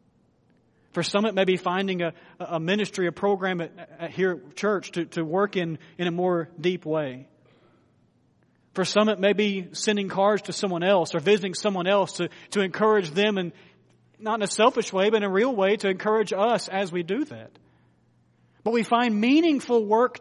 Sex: male